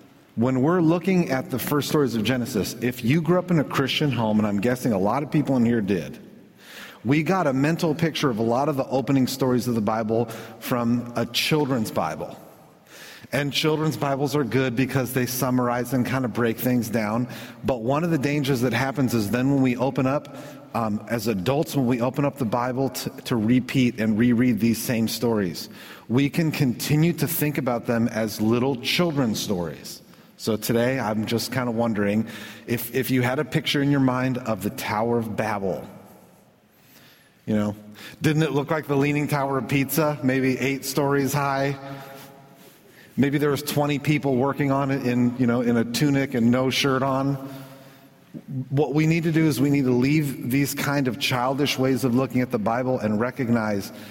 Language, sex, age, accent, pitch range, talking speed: English, male, 40-59, American, 120-140 Hz, 195 wpm